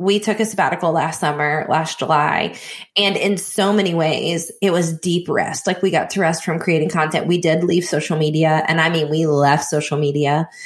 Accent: American